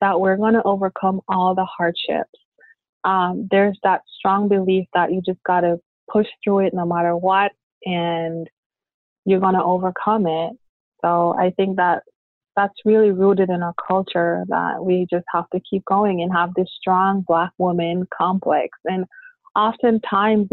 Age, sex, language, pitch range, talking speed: 20-39, female, English, 175-200 Hz, 165 wpm